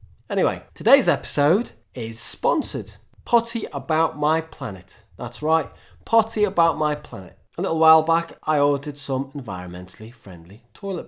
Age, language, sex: 30-49, English, male